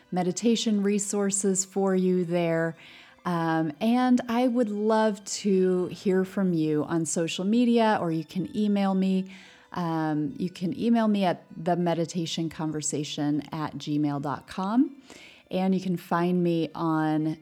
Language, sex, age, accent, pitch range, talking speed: English, female, 30-49, American, 165-220 Hz, 135 wpm